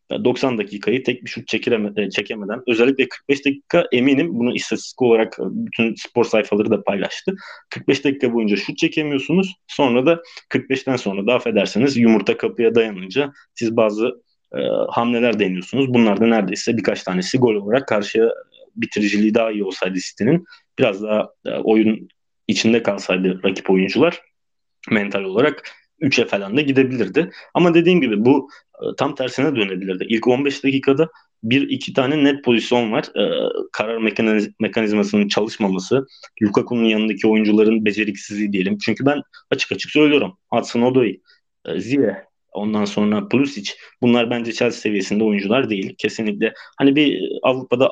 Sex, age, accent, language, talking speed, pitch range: male, 30-49, native, Turkish, 140 wpm, 105-135 Hz